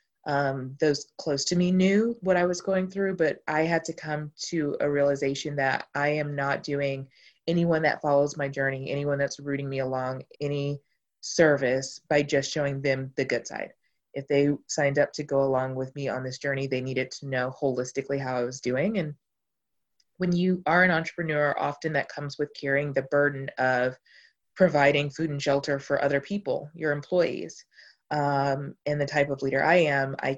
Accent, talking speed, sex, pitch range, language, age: American, 190 wpm, female, 135-155 Hz, English, 20-39